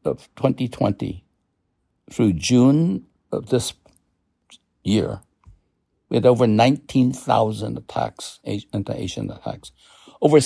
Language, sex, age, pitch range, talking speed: English, male, 60-79, 105-145 Hz, 90 wpm